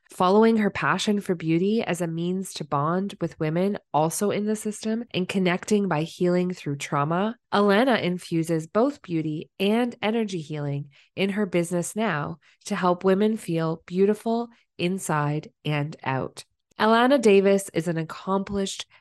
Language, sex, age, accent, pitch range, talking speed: English, female, 20-39, American, 165-210 Hz, 145 wpm